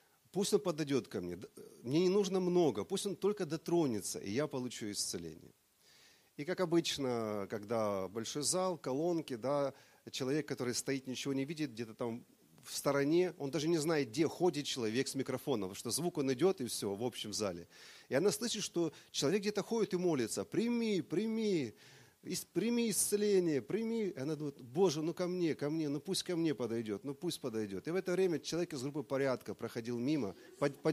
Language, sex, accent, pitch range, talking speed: Russian, male, native, 130-180 Hz, 185 wpm